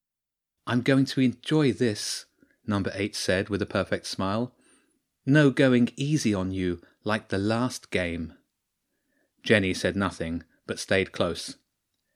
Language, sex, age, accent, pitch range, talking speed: English, male, 30-49, British, 95-120 Hz, 135 wpm